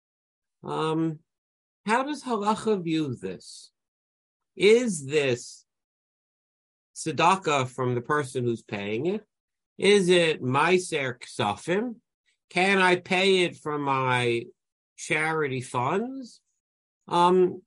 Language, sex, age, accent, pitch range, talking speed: English, male, 50-69, American, 140-200 Hz, 90 wpm